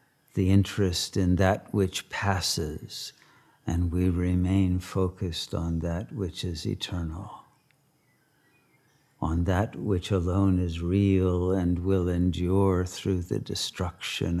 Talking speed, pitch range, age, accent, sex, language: 110 wpm, 90-140 Hz, 60-79, American, male, English